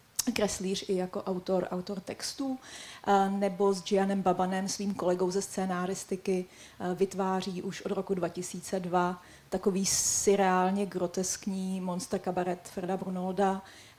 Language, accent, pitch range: Czech, native, 190-215 Hz